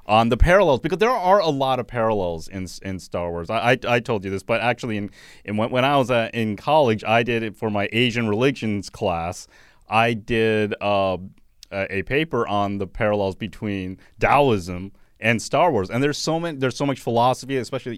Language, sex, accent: English, male, American